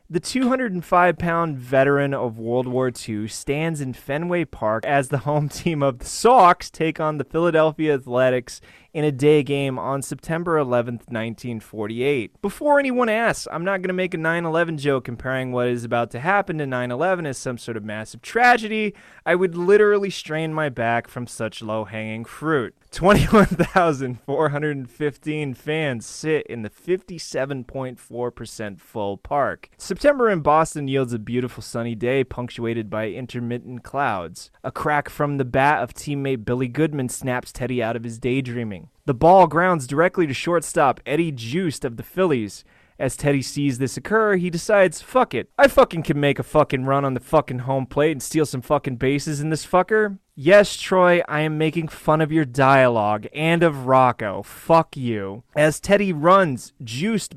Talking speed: 165 wpm